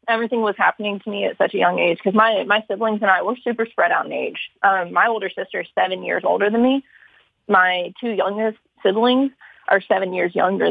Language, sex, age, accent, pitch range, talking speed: English, female, 20-39, American, 190-225 Hz, 225 wpm